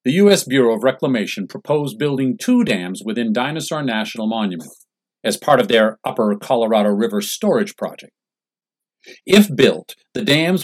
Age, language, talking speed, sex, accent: 50-69, English, 145 wpm, male, American